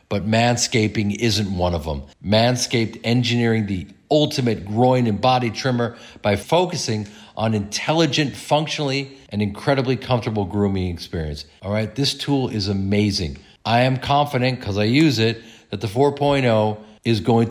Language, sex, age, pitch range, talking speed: English, male, 50-69, 100-125 Hz, 145 wpm